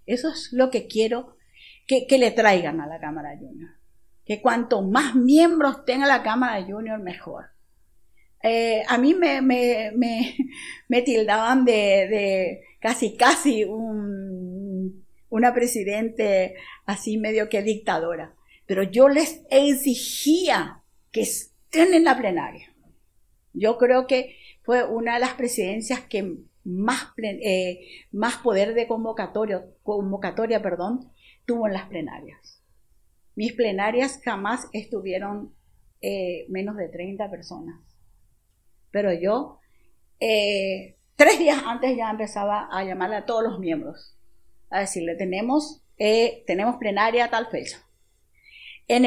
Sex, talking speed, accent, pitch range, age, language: female, 125 wpm, American, 195-255 Hz, 50-69, Spanish